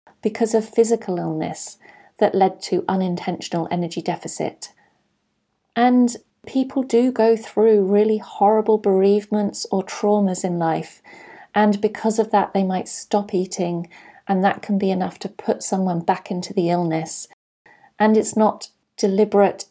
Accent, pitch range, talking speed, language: British, 180-215 Hz, 140 wpm, English